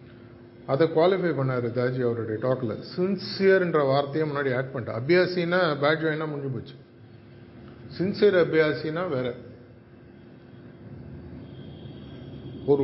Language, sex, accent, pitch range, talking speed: Tamil, male, native, 120-150 Hz, 95 wpm